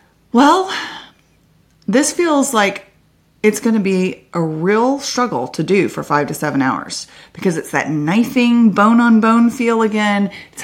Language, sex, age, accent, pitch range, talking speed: English, female, 30-49, American, 155-215 Hz, 160 wpm